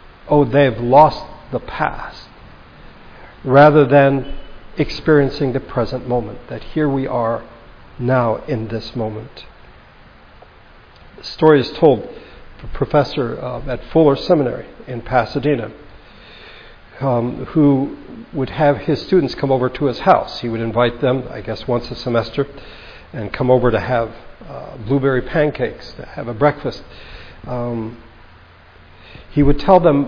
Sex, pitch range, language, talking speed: male, 120-145 Hz, English, 135 wpm